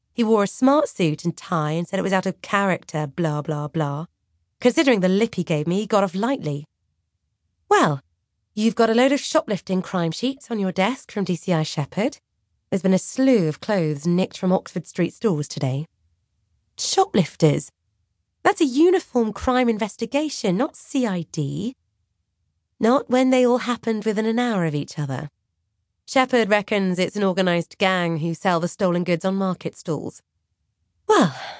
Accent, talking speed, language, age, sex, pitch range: British, 165 wpm, English, 30-49, female, 150-225 Hz